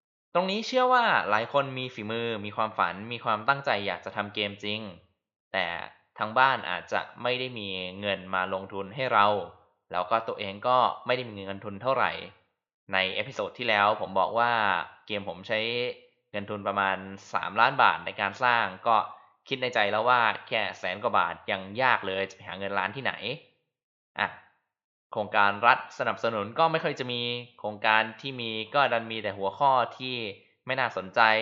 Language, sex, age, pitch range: Thai, male, 20-39, 100-130 Hz